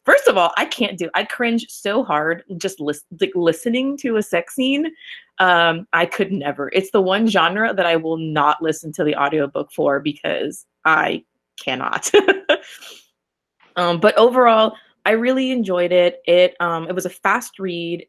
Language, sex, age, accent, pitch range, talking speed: English, female, 20-39, American, 165-230 Hz, 175 wpm